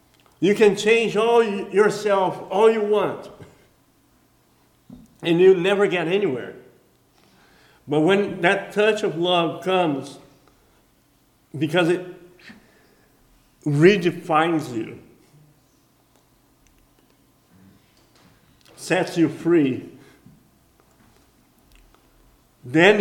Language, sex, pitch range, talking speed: English, male, 145-190 Hz, 75 wpm